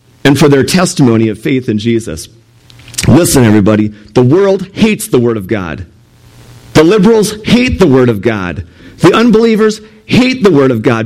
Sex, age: male, 40-59